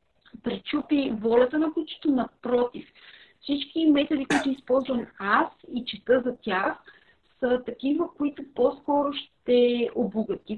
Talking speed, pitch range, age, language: 115 wpm, 230-290 Hz, 40-59, Bulgarian